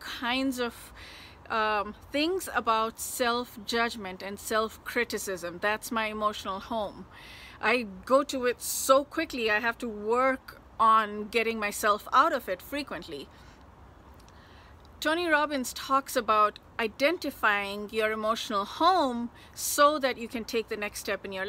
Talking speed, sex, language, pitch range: 130 wpm, female, English, 220-285 Hz